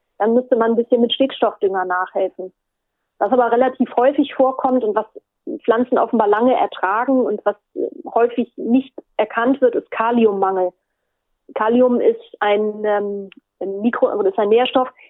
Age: 30-49